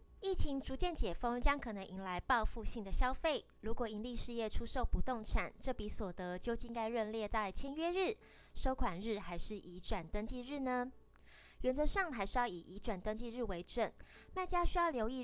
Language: Chinese